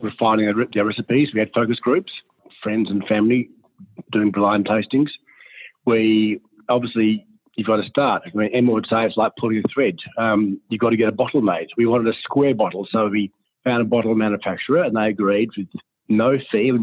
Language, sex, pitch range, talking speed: English, male, 105-115 Hz, 195 wpm